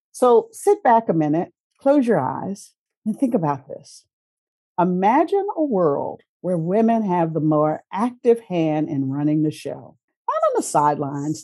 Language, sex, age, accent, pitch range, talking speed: English, female, 50-69, American, 150-235 Hz, 155 wpm